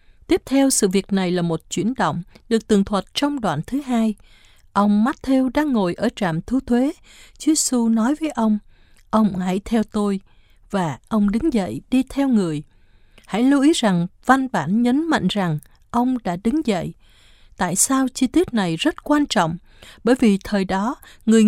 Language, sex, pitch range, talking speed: Vietnamese, female, 190-265 Hz, 185 wpm